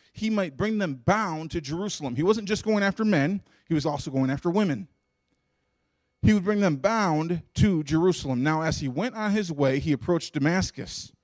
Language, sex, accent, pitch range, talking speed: English, male, American, 145-200 Hz, 190 wpm